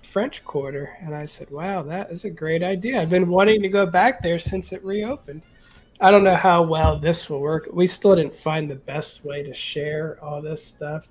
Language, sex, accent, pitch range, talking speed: English, male, American, 155-200 Hz, 220 wpm